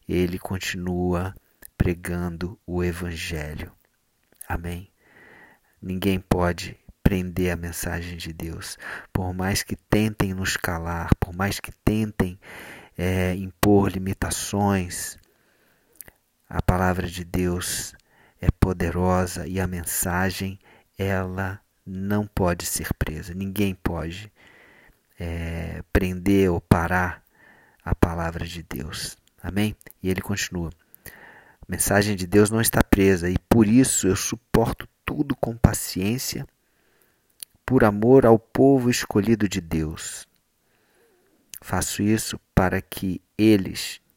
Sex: male